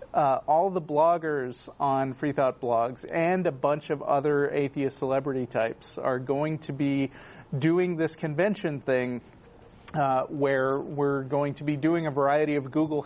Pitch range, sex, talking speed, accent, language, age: 130-160 Hz, male, 155 wpm, American, English, 40-59